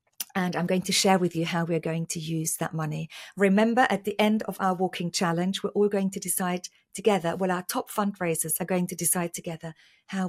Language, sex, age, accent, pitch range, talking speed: English, female, 40-59, British, 175-210 Hz, 220 wpm